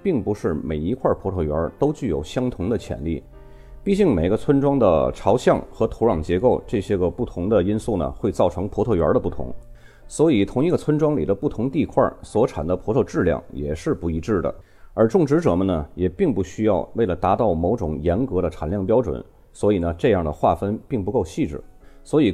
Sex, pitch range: male, 85-130 Hz